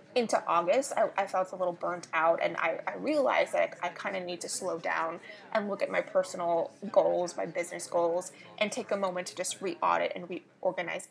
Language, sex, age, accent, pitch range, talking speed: English, female, 20-39, American, 190-255 Hz, 215 wpm